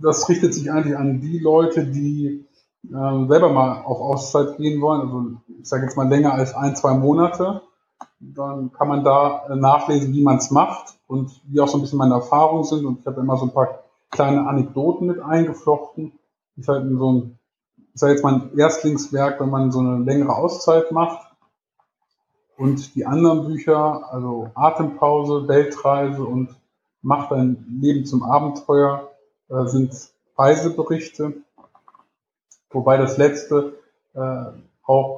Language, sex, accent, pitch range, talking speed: German, male, German, 130-150 Hz, 155 wpm